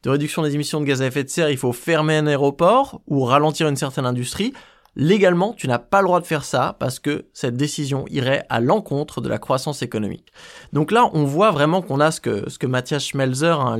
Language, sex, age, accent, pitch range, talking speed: French, male, 20-39, French, 135-175 Hz, 230 wpm